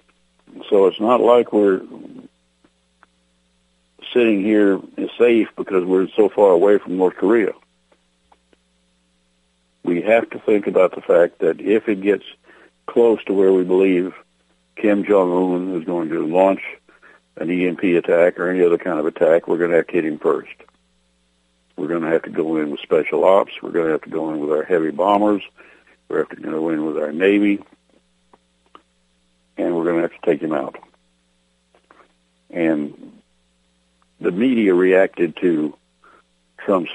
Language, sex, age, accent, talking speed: English, male, 60-79, American, 165 wpm